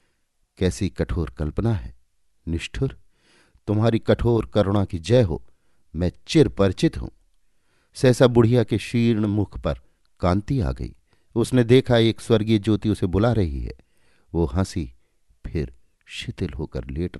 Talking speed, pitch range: 135 wpm, 80-105 Hz